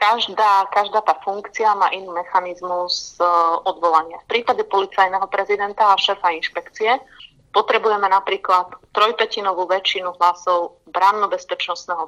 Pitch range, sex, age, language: 175-205 Hz, female, 30-49, Slovak